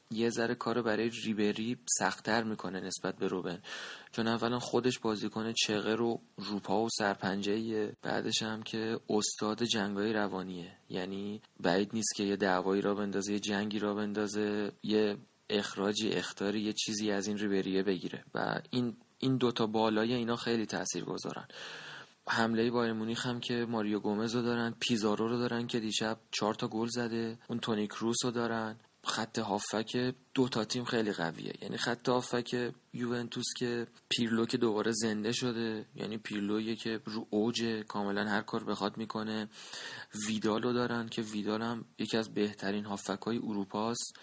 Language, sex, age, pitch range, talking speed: Persian, male, 20-39, 105-120 Hz, 155 wpm